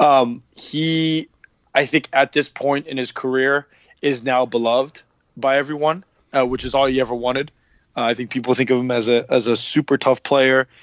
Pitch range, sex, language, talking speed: 120-140 Hz, male, English, 200 wpm